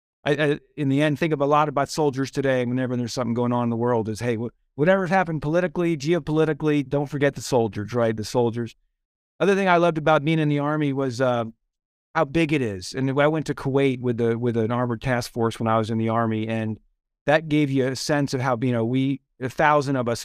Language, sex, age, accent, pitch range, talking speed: English, male, 40-59, American, 120-150 Hz, 245 wpm